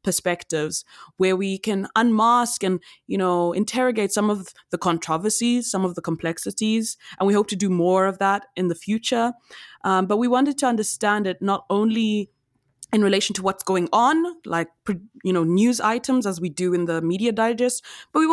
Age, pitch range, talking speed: 20-39, 170-225 Hz, 185 wpm